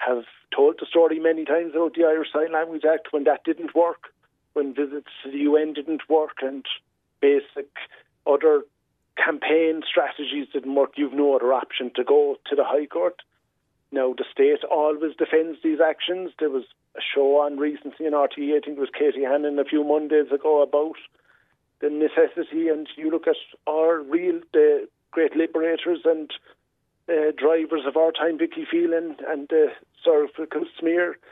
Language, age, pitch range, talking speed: English, 50-69, 145-175 Hz, 170 wpm